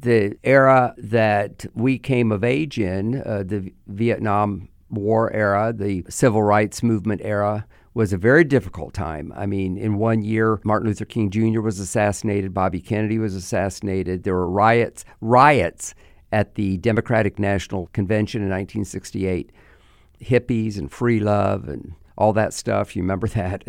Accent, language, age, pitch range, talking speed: American, English, 50-69, 95-115 Hz, 150 wpm